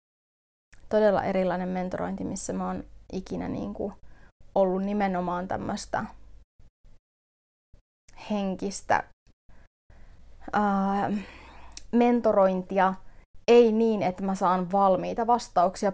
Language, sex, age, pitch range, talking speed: Finnish, female, 30-49, 185-205 Hz, 70 wpm